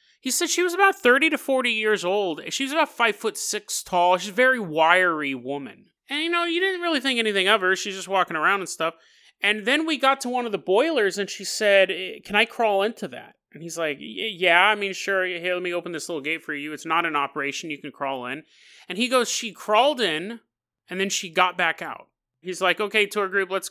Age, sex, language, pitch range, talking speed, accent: 30-49, male, English, 185-260 Hz, 245 wpm, American